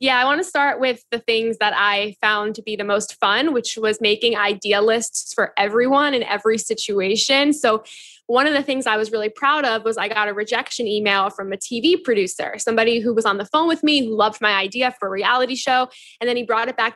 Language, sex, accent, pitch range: English, female, American, 215-265 Hz